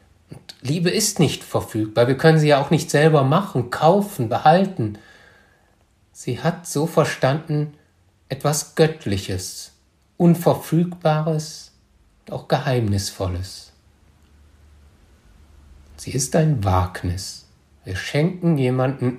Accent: German